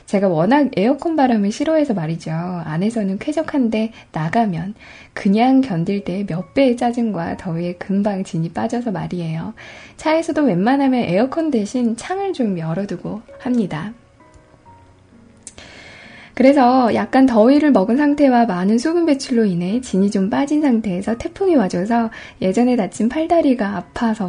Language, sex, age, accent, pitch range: Korean, female, 10-29, native, 190-260 Hz